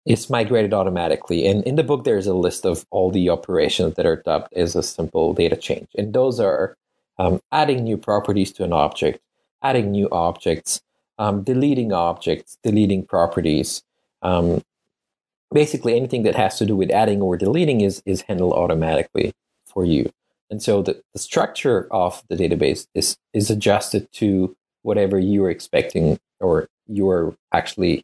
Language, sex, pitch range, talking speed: English, male, 95-120 Hz, 160 wpm